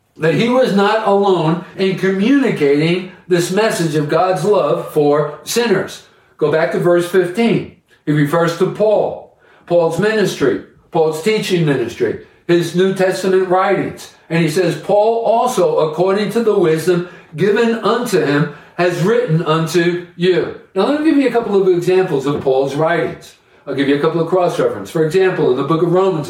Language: English